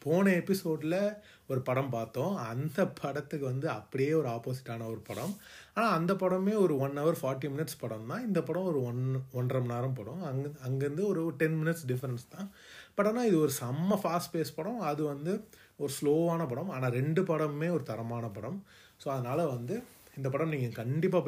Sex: male